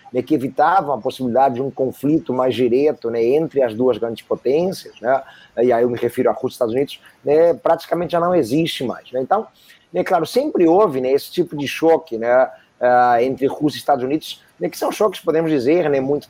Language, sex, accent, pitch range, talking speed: Portuguese, male, Brazilian, 125-165 Hz, 215 wpm